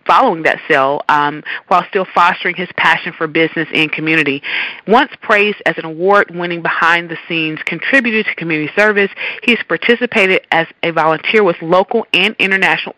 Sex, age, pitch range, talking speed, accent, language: female, 30-49, 165-220 Hz, 150 wpm, American, English